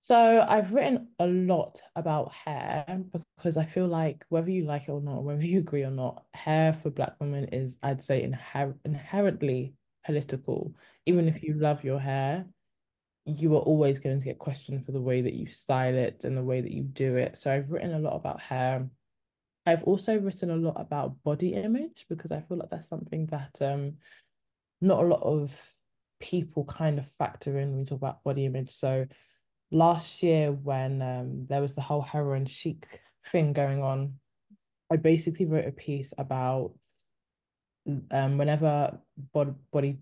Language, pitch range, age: English, 130-155 Hz, 20-39